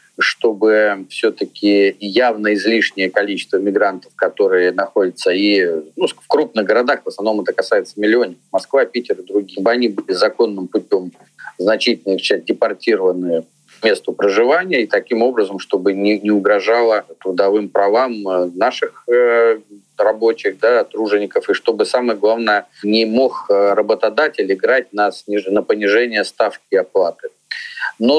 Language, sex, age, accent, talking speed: Russian, male, 40-59, native, 130 wpm